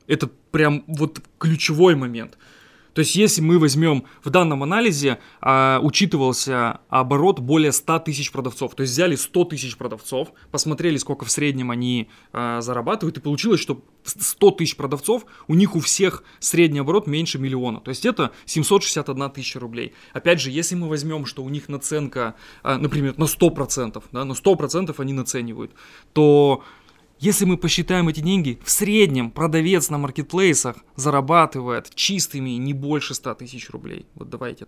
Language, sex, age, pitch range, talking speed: Russian, male, 20-39, 130-165 Hz, 155 wpm